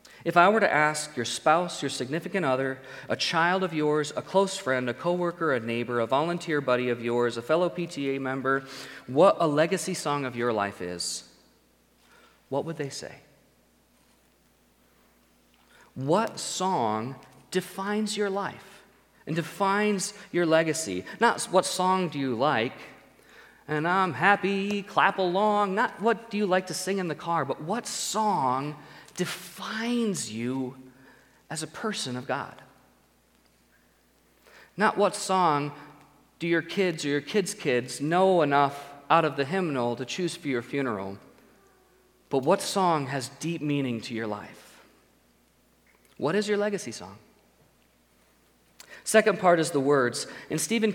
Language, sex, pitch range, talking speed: English, male, 130-185 Hz, 145 wpm